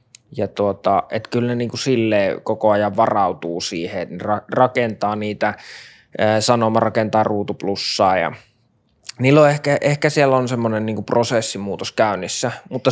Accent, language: native, Finnish